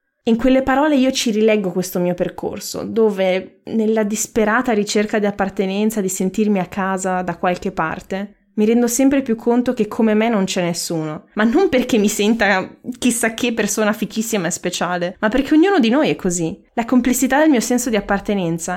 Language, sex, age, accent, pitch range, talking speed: Italian, female, 20-39, native, 185-225 Hz, 185 wpm